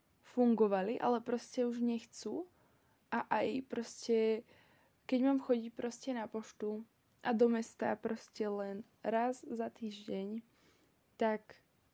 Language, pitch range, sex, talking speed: Slovak, 215-255 Hz, female, 115 wpm